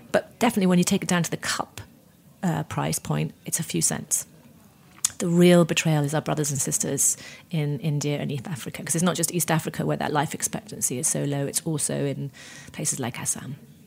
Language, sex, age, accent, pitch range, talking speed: English, female, 30-49, British, 160-200 Hz, 210 wpm